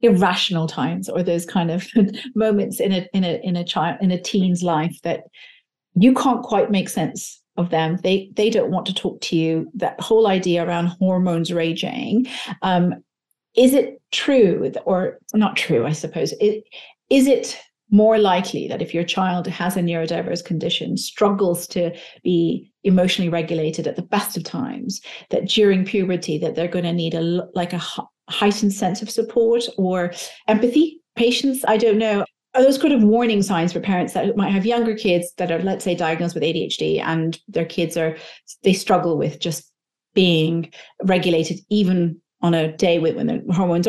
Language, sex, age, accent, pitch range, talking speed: English, female, 40-59, British, 170-215 Hz, 180 wpm